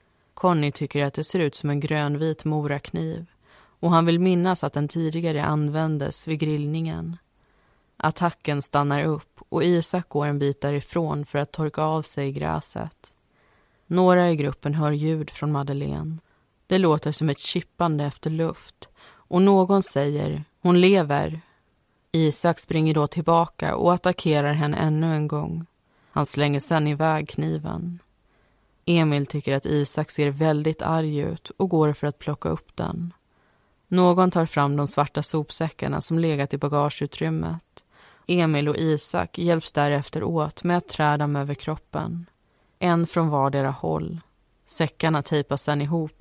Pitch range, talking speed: 145-165 Hz, 150 wpm